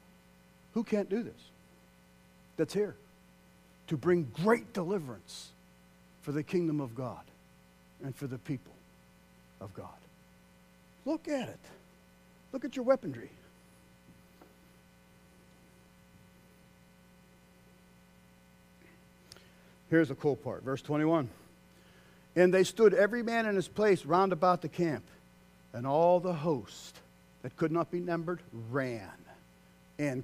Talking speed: 115 wpm